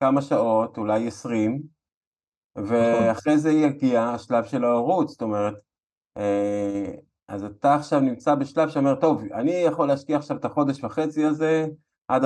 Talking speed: 135 wpm